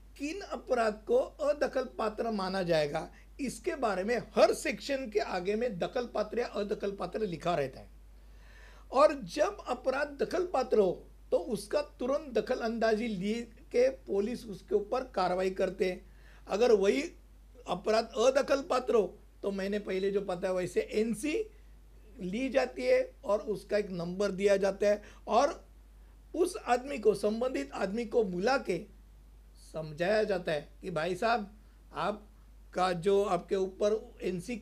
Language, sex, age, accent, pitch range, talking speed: Hindi, male, 50-69, native, 195-270 Hz, 150 wpm